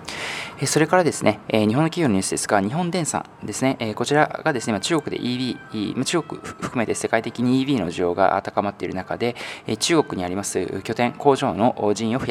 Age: 20-39